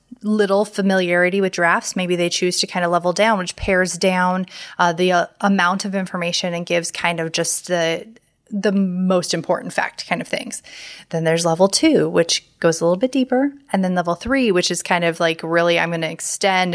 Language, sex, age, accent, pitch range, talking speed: English, female, 20-39, American, 175-215 Hz, 210 wpm